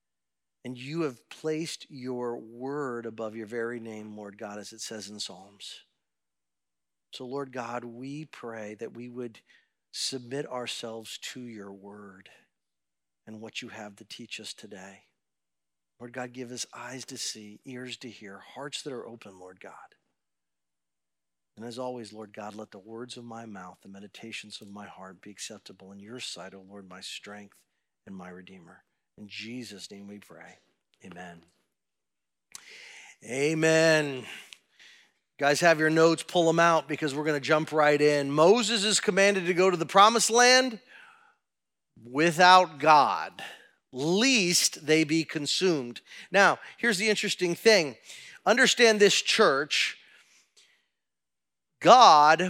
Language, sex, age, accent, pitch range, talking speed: English, male, 50-69, American, 100-155 Hz, 145 wpm